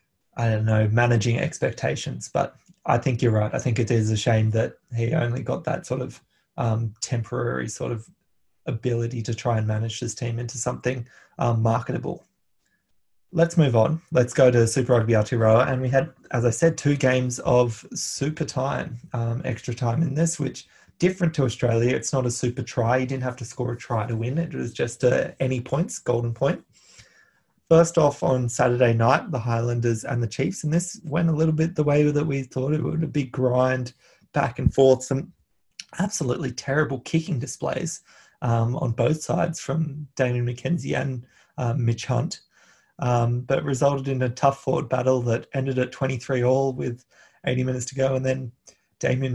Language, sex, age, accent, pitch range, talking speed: English, male, 20-39, Australian, 120-145 Hz, 190 wpm